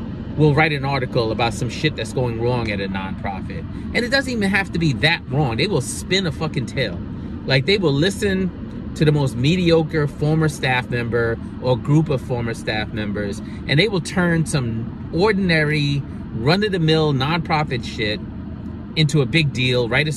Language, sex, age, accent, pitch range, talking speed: English, male, 30-49, American, 115-155 Hz, 185 wpm